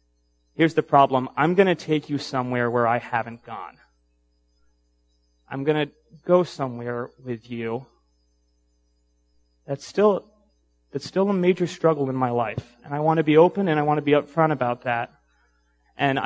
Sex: male